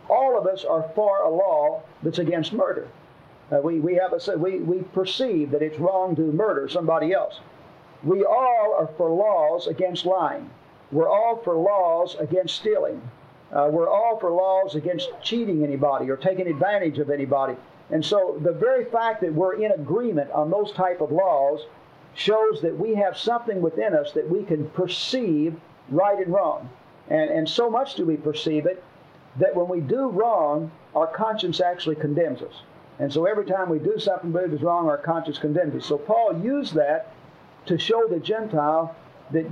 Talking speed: 180 wpm